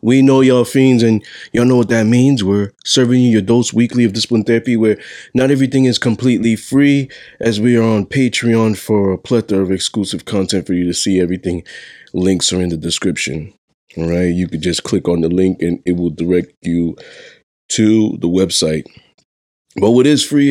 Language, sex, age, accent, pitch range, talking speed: English, male, 20-39, American, 105-130 Hz, 195 wpm